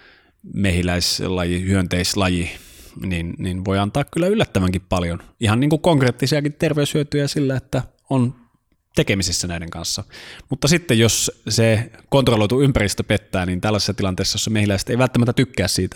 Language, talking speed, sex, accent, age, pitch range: Finnish, 135 wpm, male, native, 20-39, 90-120 Hz